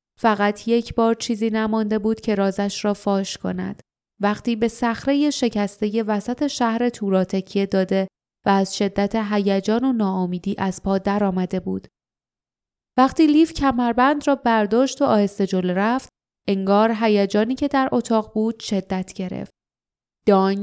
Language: Persian